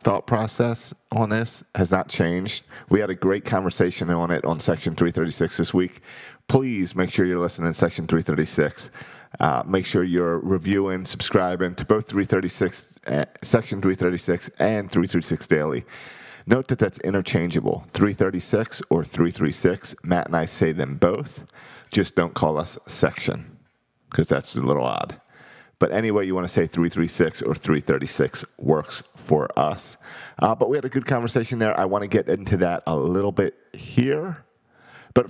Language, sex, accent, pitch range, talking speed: English, male, American, 85-115 Hz, 165 wpm